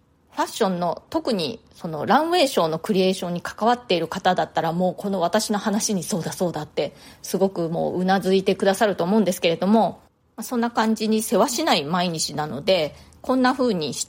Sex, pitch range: female, 185-235 Hz